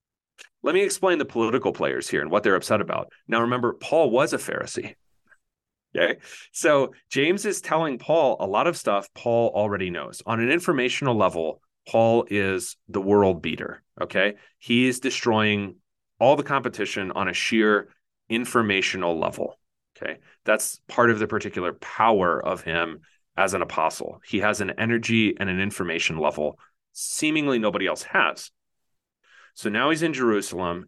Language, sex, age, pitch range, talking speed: English, male, 30-49, 95-120 Hz, 155 wpm